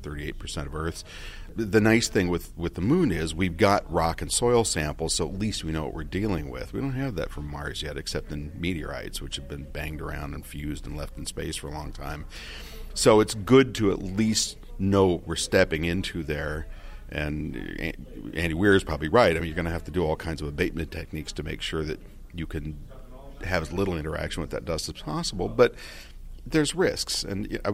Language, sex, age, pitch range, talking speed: English, male, 40-59, 75-95 Hz, 215 wpm